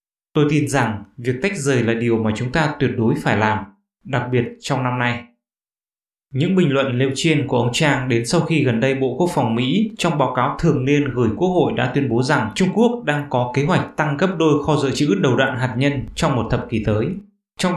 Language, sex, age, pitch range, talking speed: English, male, 20-39, 125-165 Hz, 240 wpm